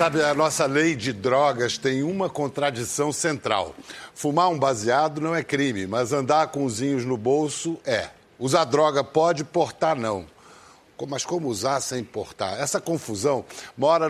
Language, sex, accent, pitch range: Portuguese, male, Brazilian, 130-175 Hz